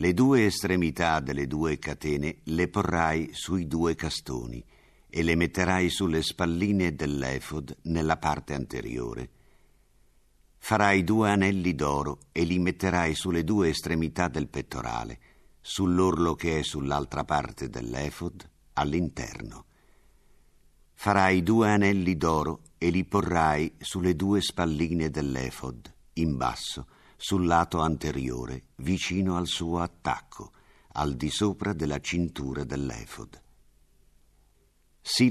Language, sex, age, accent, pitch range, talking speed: Italian, male, 50-69, native, 75-90 Hz, 110 wpm